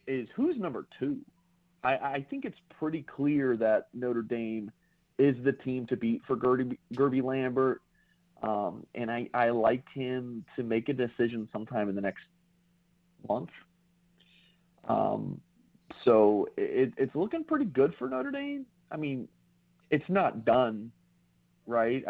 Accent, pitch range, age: American, 115-170 Hz, 40-59